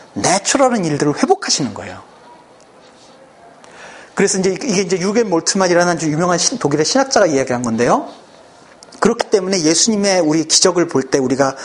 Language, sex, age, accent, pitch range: Korean, male, 40-59, native, 155-245 Hz